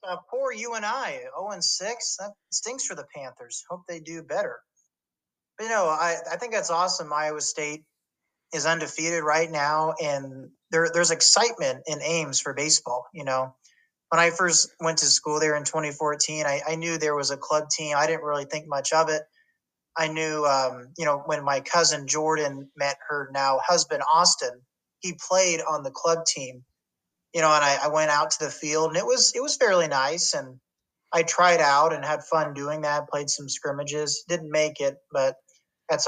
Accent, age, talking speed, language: American, 30-49, 195 wpm, English